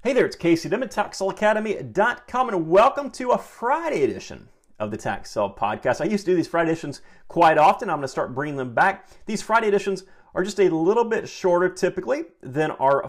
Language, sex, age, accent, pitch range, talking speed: English, male, 30-49, American, 155-220 Hz, 200 wpm